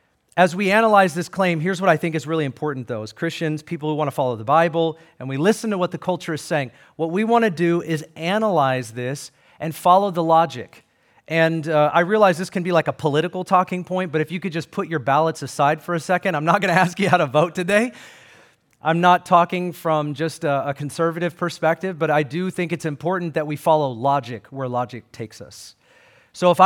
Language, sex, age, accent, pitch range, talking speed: English, male, 40-59, American, 145-185 Hz, 230 wpm